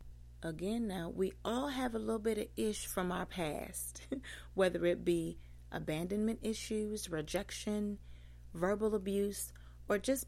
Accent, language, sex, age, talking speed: American, English, female, 30-49, 135 wpm